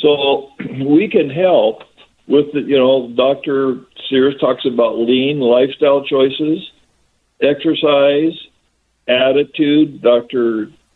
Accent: American